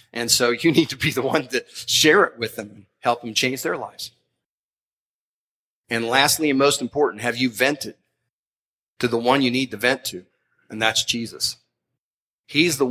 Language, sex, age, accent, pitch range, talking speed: English, male, 40-59, American, 120-140 Hz, 185 wpm